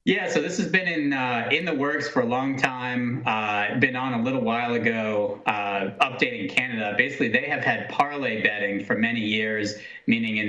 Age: 30-49